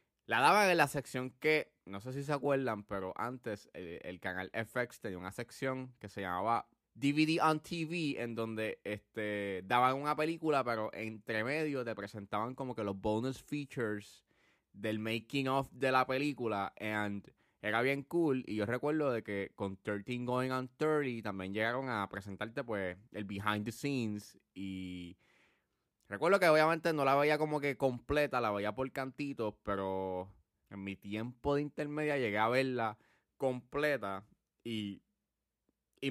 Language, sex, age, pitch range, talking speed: Spanish, male, 20-39, 105-140 Hz, 160 wpm